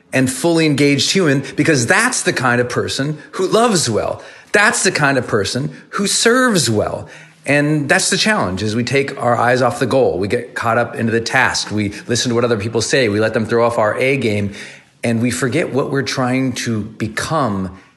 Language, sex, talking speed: English, male, 210 wpm